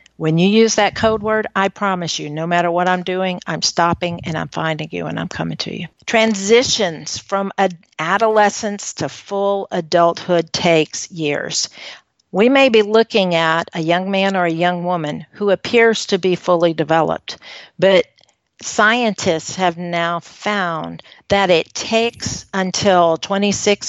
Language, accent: English, American